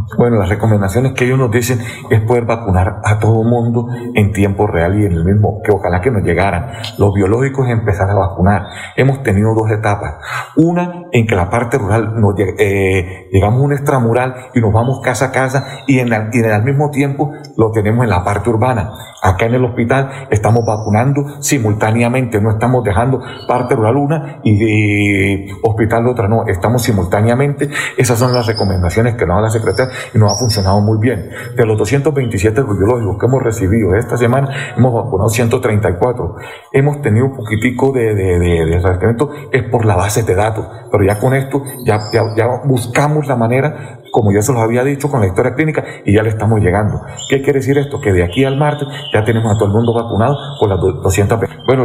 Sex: male